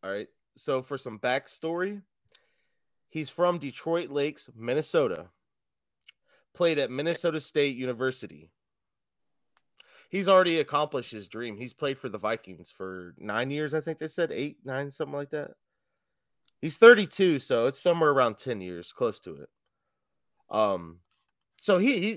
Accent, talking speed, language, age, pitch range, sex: American, 145 wpm, English, 30-49, 120-165 Hz, male